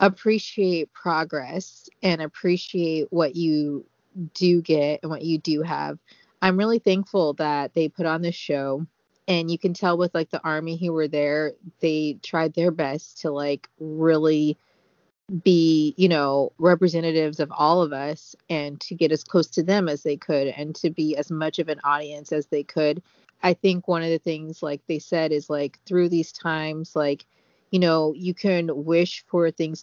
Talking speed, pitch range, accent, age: 185 wpm, 150-175 Hz, American, 30-49